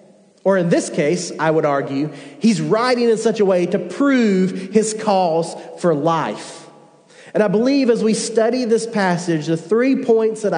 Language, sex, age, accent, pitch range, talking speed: English, male, 40-59, American, 165-220 Hz, 175 wpm